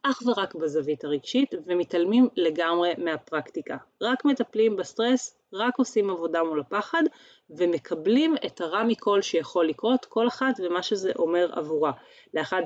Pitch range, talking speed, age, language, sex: 170-250 Hz, 135 wpm, 30-49, Hebrew, female